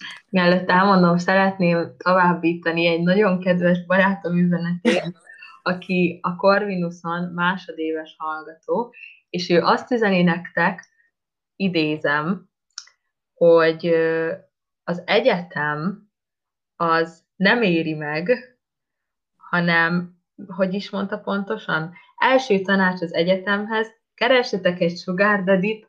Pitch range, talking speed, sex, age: 165-195 Hz, 90 wpm, female, 20-39